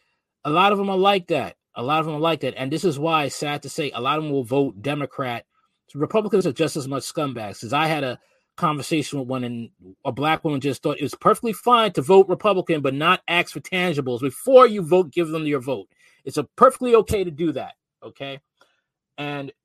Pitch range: 140-175 Hz